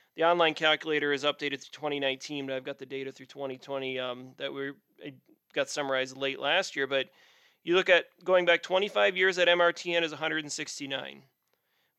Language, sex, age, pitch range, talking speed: English, male, 30-49, 145-170 Hz, 170 wpm